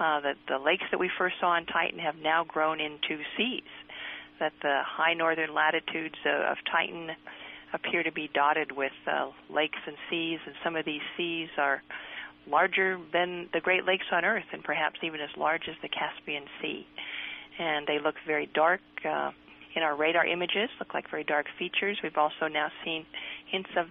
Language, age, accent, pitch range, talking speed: English, 50-69, American, 155-175 Hz, 190 wpm